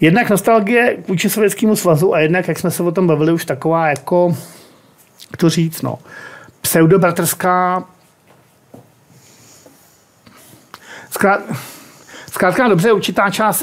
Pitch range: 145-175 Hz